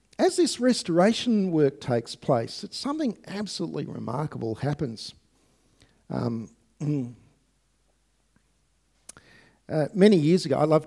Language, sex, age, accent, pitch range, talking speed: English, male, 50-69, Australian, 110-135 Hz, 95 wpm